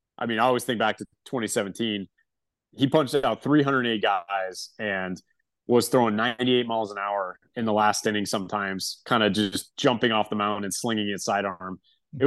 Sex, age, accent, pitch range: male, 30-49, American, 100-125 Hz